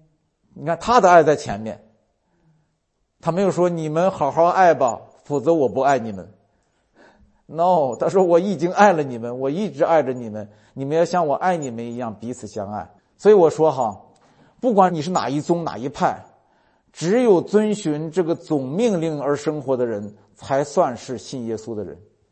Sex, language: male, Chinese